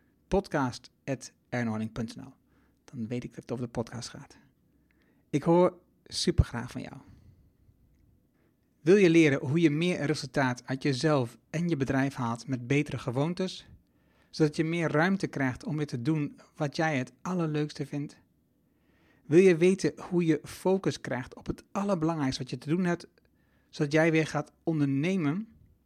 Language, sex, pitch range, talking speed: Dutch, male, 125-165 Hz, 150 wpm